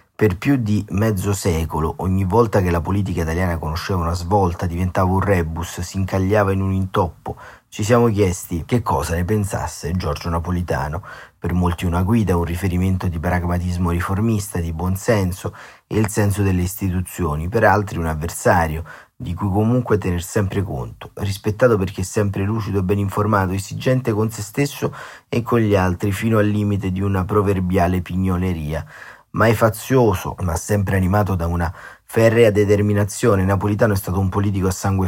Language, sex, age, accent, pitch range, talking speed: Italian, male, 30-49, native, 90-105 Hz, 165 wpm